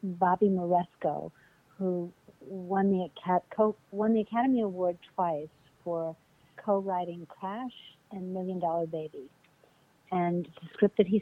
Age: 60-79